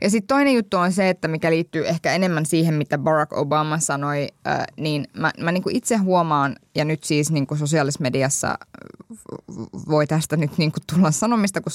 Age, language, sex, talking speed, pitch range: 20-39, Finnish, female, 180 wpm, 145-175 Hz